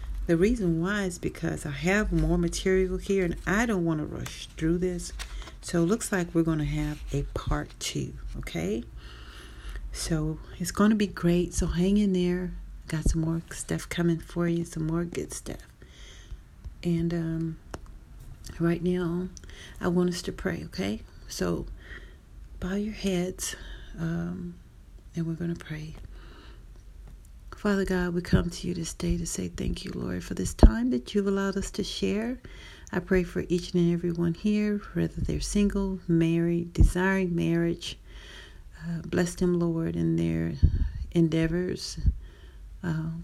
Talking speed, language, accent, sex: 160 wpm, English, American, female